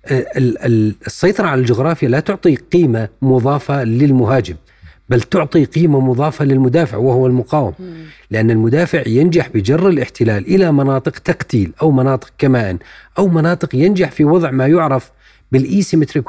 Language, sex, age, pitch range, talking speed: Arabic, male, 40-59, 120-165 Hz, 125 wpm